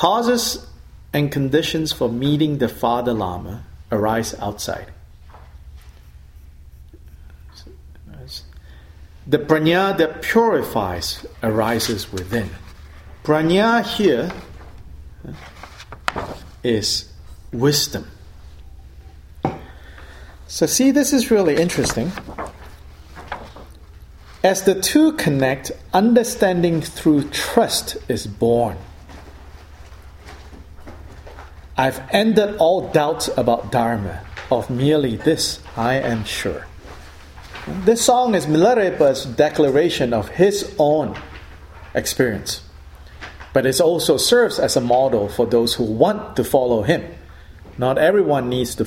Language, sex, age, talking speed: English, male, 40-59, 90 wpm